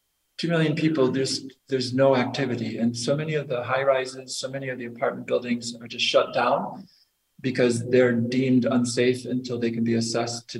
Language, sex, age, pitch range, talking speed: English, male, 40-59, 115-125 Hz, 195 wpm